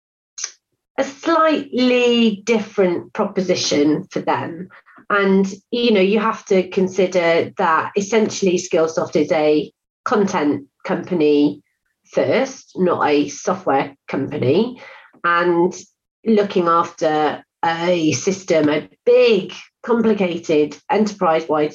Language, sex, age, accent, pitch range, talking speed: English, female, 40-59, British, 160-210 Hz, 95 wpm